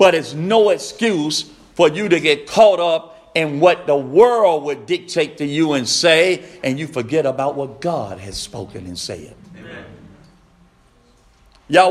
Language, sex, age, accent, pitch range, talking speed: English, male, 50-69, American, 125-180 Hz, 155 wpm